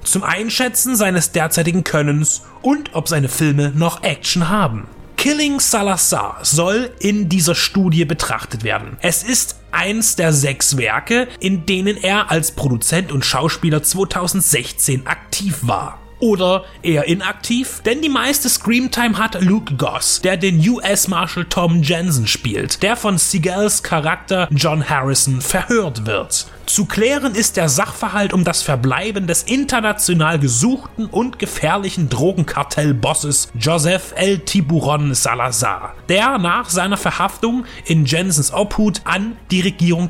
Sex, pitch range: male, 150-205 Hz